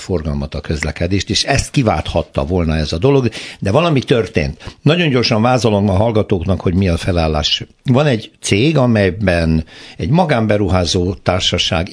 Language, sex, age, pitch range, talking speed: Hungarian, male, 60-79, 80-115 Hz, 145 wpm